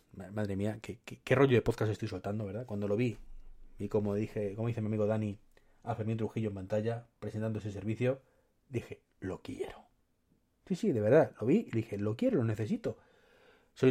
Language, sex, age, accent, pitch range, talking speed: Spanish, male, 30-49, Spanish, 105-130 Hz, 195 wpm